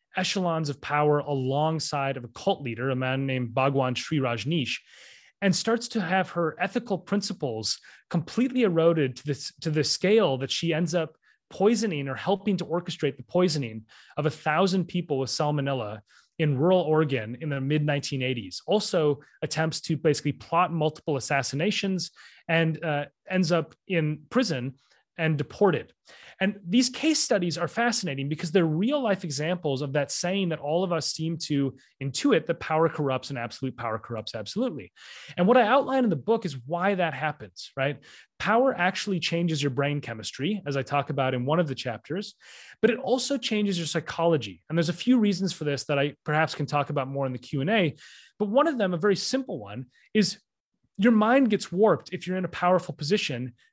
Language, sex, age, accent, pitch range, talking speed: English, male, 30-49, Canadian, 140-190 Hz, 185 wpm